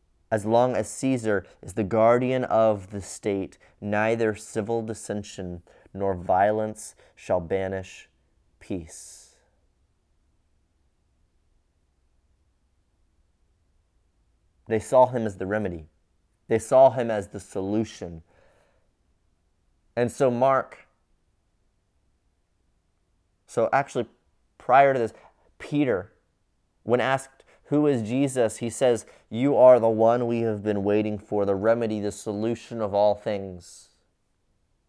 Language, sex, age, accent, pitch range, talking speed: English, male, 30-49, American, 90-115 Hz, 105 wpm